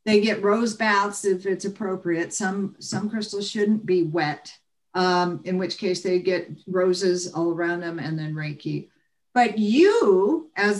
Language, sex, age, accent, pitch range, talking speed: English, female, 50-69, American, 185-245 Hz, 160 wpm